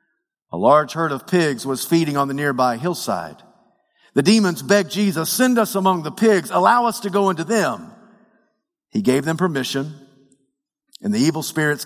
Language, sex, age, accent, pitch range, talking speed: English, male, 50-69, American, 140-190 Hz, 170 wpm